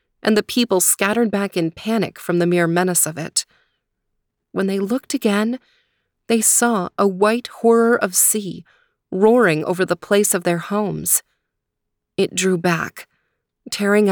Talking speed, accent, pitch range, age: 150 wpm, American, 170-210 Hz, 30-49